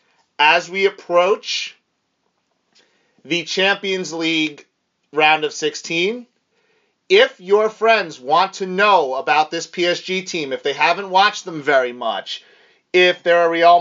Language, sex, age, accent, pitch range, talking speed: English, male, 30-49, American, 150-205 Hz, 130 wpm